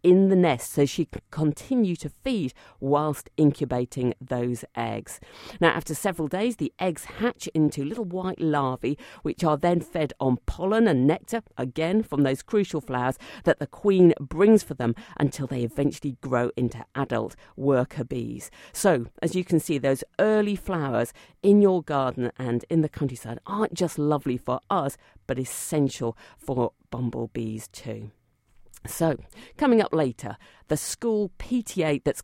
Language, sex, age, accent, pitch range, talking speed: English, female, 50-69, British, 125-195 Hz, 155 wpm